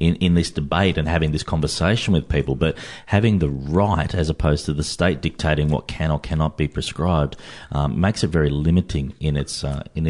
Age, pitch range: 30-49, 80-95 Hz